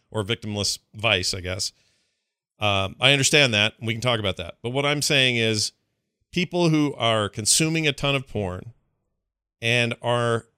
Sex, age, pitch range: male, 40-59, 110-160 Hz